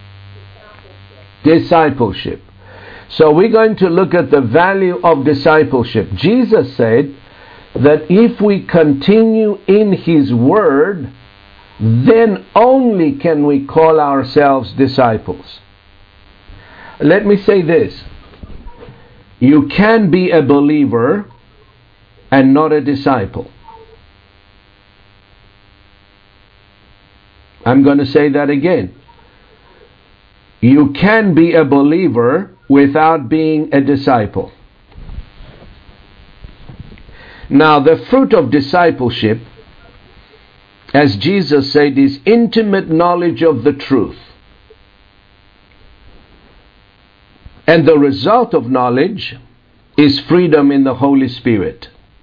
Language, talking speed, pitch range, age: English, 90 wpm, 100-160 Hz, 60-79